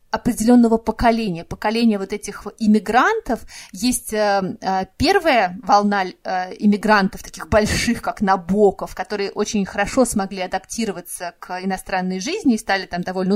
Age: 30-49